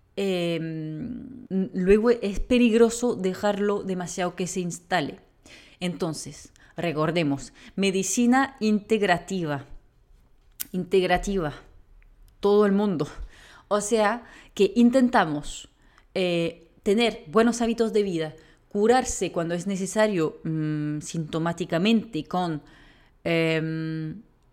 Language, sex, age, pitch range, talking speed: Spanish, female, 30-49, 165-220 Hz, 85 wpm